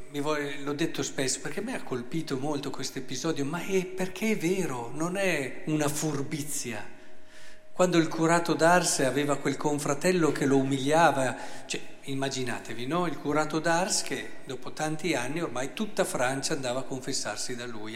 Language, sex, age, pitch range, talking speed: Italian, male, 50-69, 125-185 Hz, 160 wpm